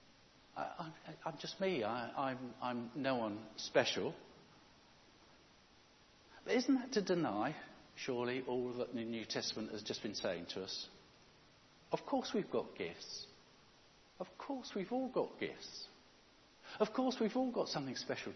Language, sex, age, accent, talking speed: English, male, 60-79, British, 140 wpm